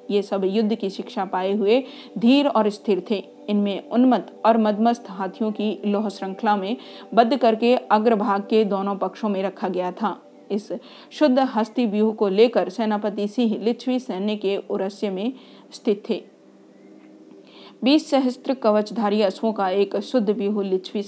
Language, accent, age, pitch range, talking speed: Hindi, native, 40-59, 195-235 Hz, 150 wpm